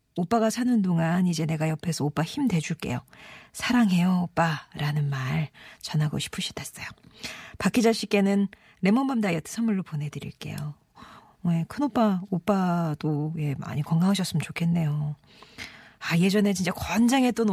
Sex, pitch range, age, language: female, 155-210 Hz, 40-59, Korean